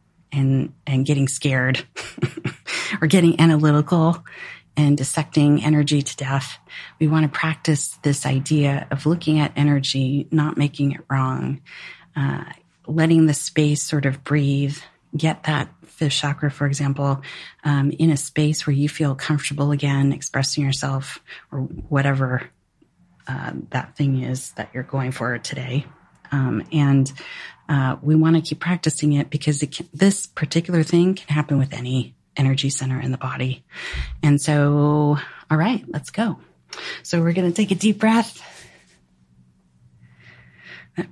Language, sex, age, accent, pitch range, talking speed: English, female, 40-59, American, 130-155 Hz, 145 wpm